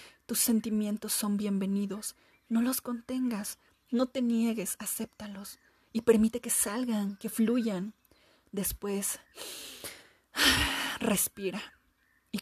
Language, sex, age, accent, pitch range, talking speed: Spanish, female, 30-49, Mexican, 205-235 Hz, 95 wpm